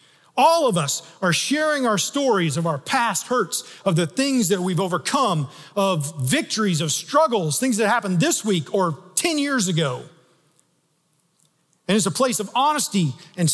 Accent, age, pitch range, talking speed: American, 40-59, 160-240 Hz, 165 wpm